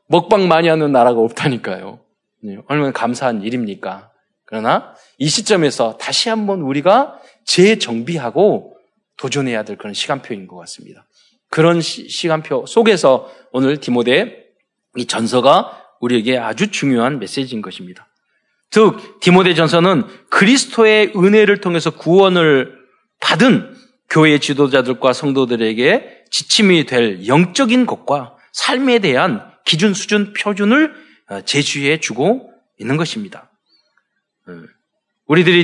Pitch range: 140-215 Hz